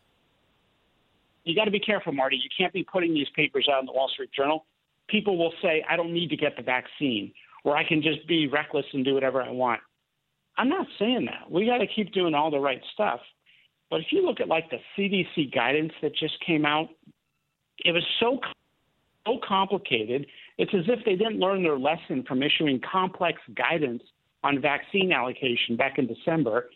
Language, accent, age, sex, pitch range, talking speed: English, American, 50-69, male, 140-190 Hz, 200 wpm